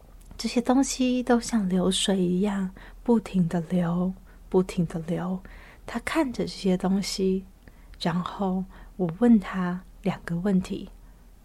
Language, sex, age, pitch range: Chinese, female, 30-49, 175-205 Hz